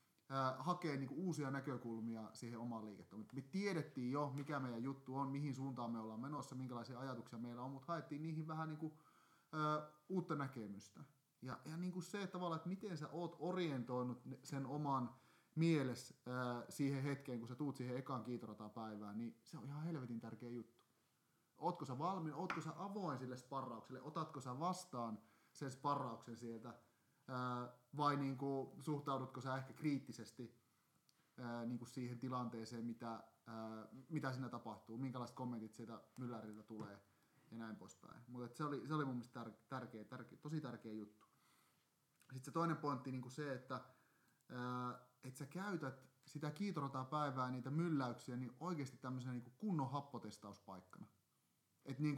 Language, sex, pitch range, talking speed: Finnish, male, 120-150 Hz, 155 wpm